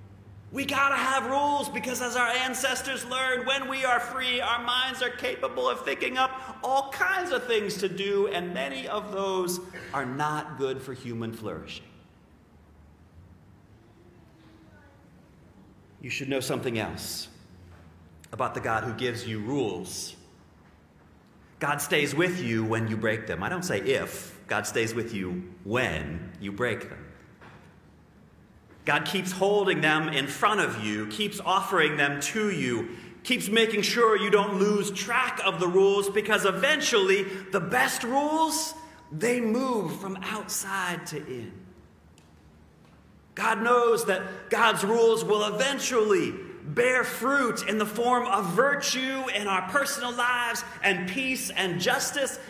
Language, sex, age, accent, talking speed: English, male, 40-59, American, 145 wpm